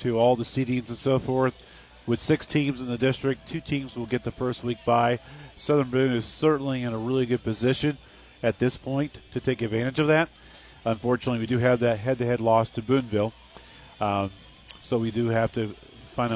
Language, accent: English, American